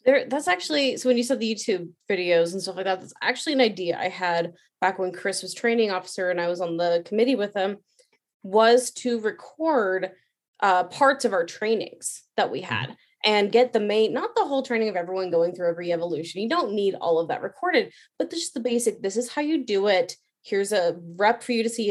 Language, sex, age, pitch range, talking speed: English, female, 20-39, 185-245 Hz, 225 wpm